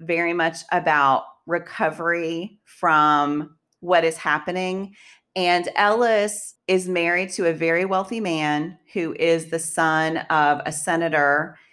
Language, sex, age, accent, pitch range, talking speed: English, female, 30-49, American, 150-185 Hz, 125 wpm